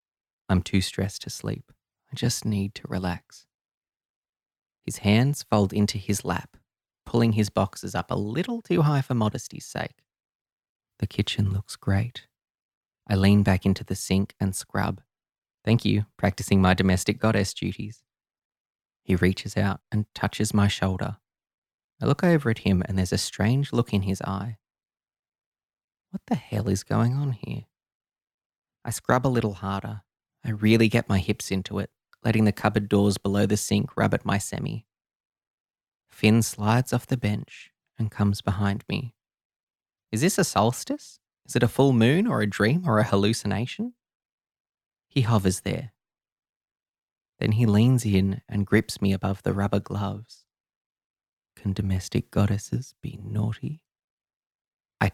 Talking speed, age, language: 150 wpm, 20-39, English